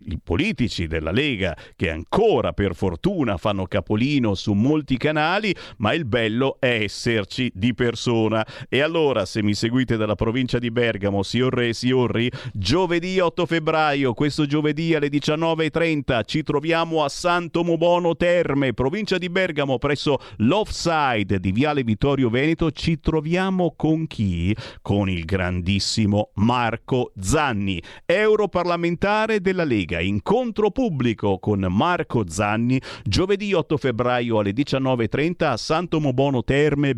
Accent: native